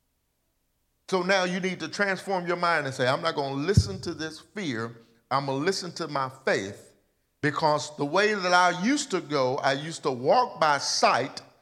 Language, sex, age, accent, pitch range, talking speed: English, male, 50-69, American, 115-165 Hz, 200 wpm